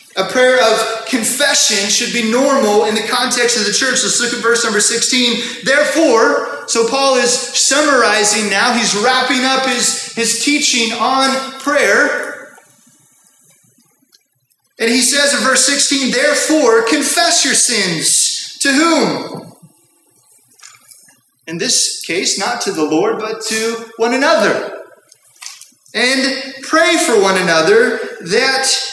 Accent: American